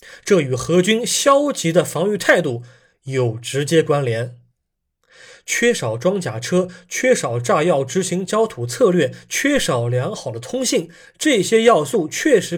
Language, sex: Chinese, male